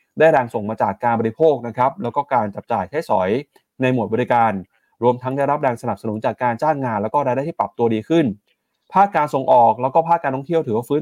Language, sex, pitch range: Thai, male, 115-145 Hz